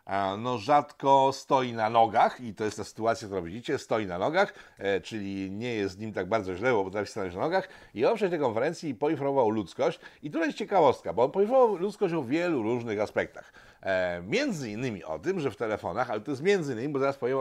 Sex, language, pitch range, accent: male, Polish, 110-145 Hz, native